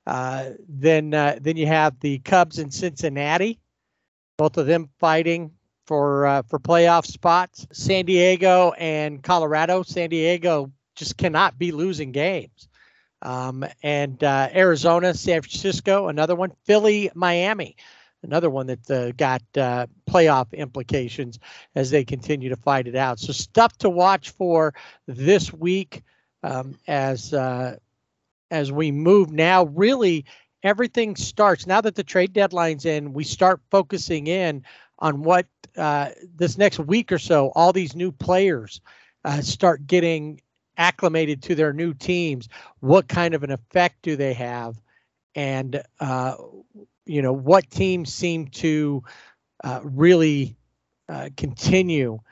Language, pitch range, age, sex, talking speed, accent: English, 140-180 Hz, 50-69, male, 140 wpm, American